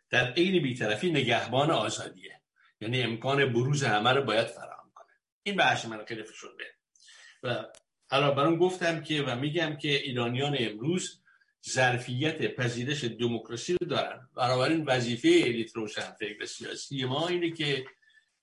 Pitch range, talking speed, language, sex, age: 120-160 Hz, 135 wpm, Persian, male, 60-79